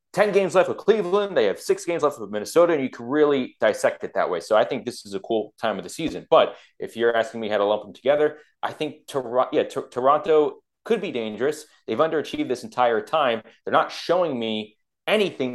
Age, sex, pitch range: 30-49, male, 110-140 Hz